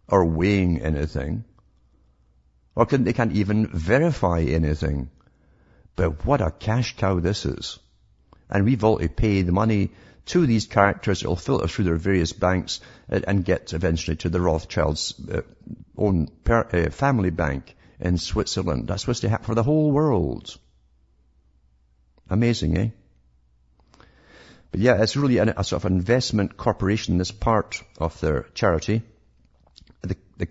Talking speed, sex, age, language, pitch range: 135 wpm, male, 50-69, English, 70-110 Hz